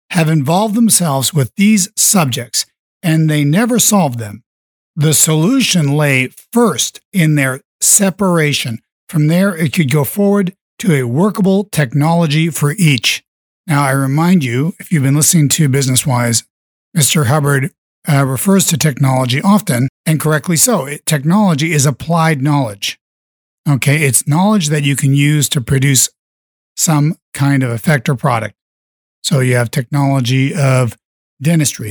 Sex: male